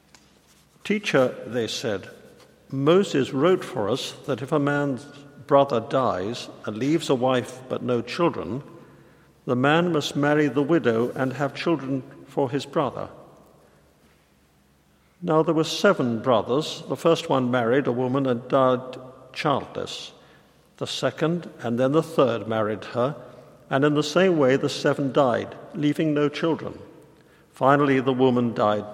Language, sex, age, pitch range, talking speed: English, male, 50-69, 120-150 Hz, 145 wpm